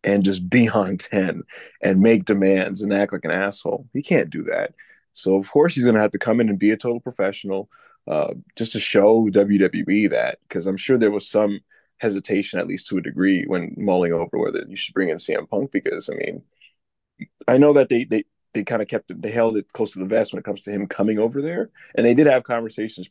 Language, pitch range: English, 100-120 Hz